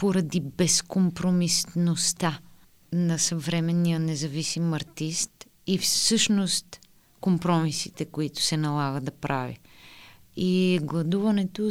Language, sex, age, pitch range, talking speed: Bulgarian, female, 20-39, 160-195 Hz, 80 wpm